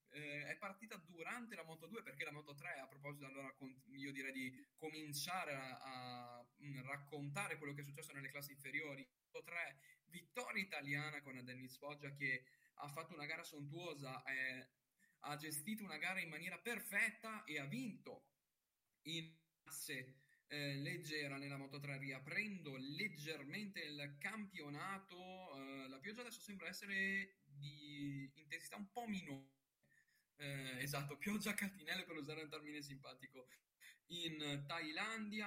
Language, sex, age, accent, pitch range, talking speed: Italian, male, 10-29, native, 135-175 Hz, 145 wpm